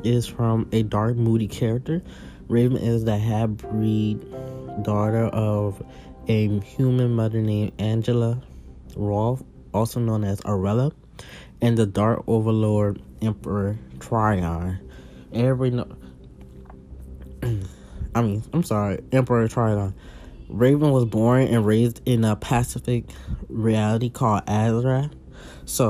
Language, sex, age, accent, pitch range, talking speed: English, male, 20-39, American, 105-120 Hz, 110 wpm